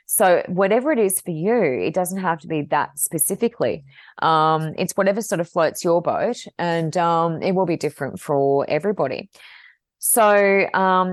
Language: English